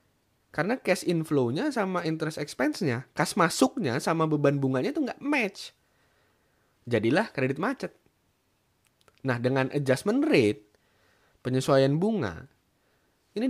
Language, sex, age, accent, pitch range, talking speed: Indonesian, male, 20-39, native, 130-210 Hz, 105 wpm